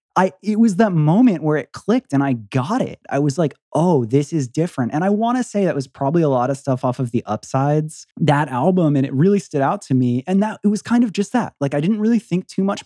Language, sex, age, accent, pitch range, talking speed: English, male, 20-39, American, 125-165 Hz, 275 wpm